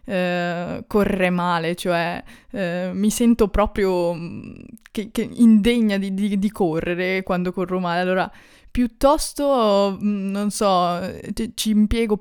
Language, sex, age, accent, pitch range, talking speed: Italian, female, 20-39, native, 170-205 Hz, 120 wpm